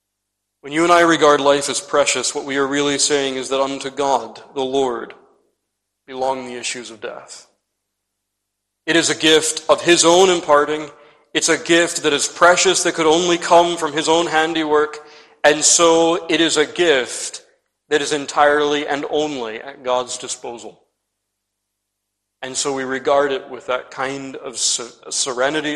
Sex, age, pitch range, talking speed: male, 40-59, 110-150 Hz, 165 wpm